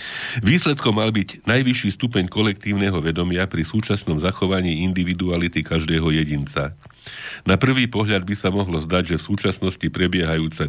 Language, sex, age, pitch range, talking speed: Slovak, male, 40-59, 80-95 Hz, 135 wpm